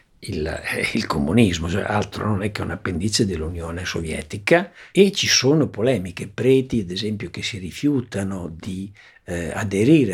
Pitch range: 90-115 Hz